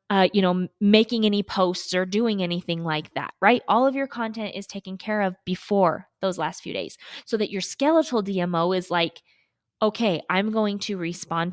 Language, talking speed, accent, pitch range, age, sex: English, 195 wpm, American, 185-235 Hz, 20-39, female